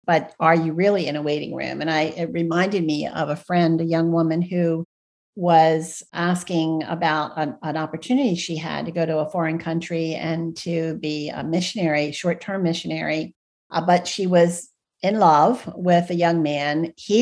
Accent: American